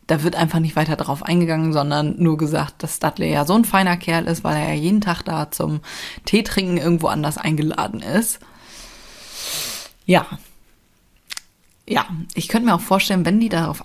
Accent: German